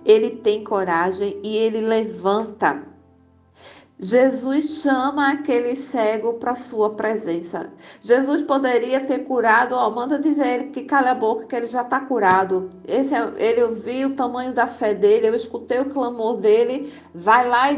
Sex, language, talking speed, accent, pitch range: female, Portuguese, 165 wpm, Brazilian, 215-265 Hz